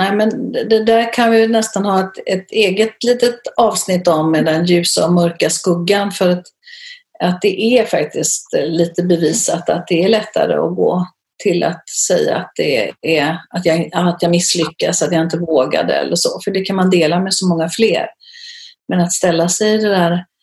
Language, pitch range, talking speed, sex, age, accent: Swedish, 170-225 Hz, 195 wpm, female, 40-59, native